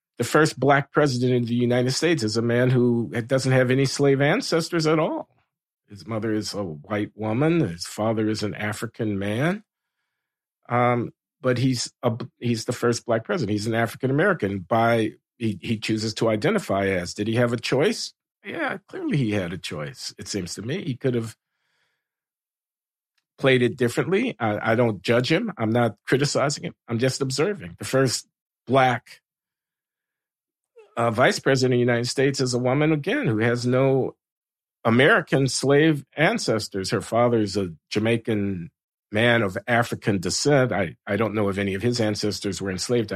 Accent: American